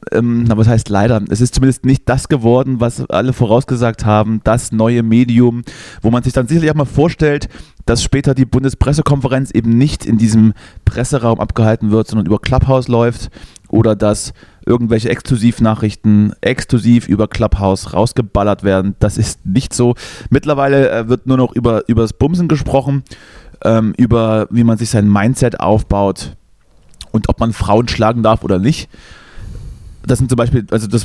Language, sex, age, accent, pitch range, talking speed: German, male, 30-49, German, 105-130 Hz, 165 wpm